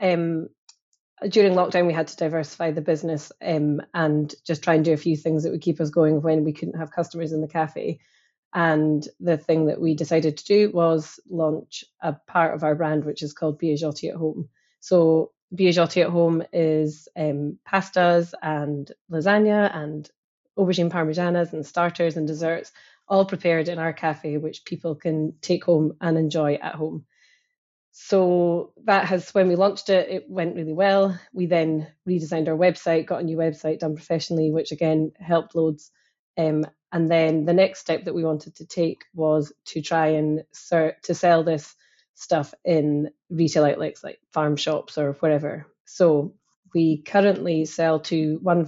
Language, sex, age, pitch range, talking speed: English, female, 20-39, 155-175 Hz, 175 wpm